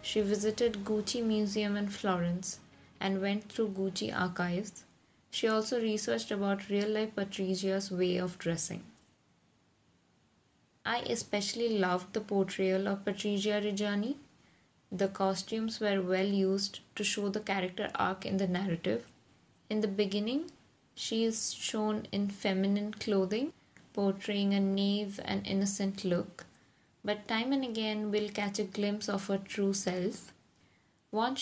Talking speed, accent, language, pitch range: 130 wpm, Indian, English, 190-215 Hz